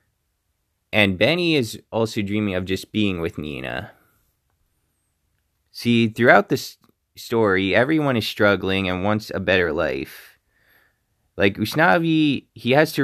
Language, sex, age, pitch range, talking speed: English, male, 20-39, 95-110 Hz, 125 wpm